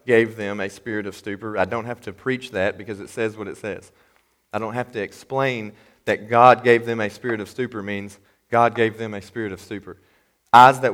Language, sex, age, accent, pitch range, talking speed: English, male, 30-49, American, 105-130 Hz, 225 wpm